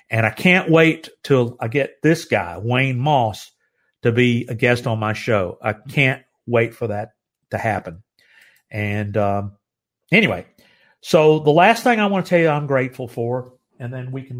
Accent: American